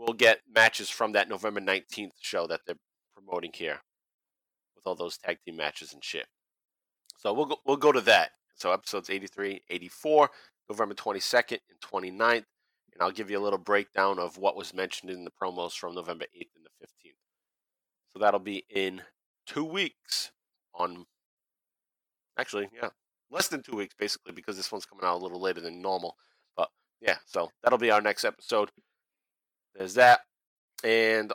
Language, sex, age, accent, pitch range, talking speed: English, male, 30-49, American, 95-115 Hz, 170 wpm